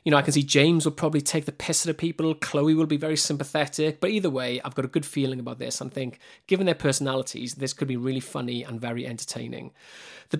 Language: English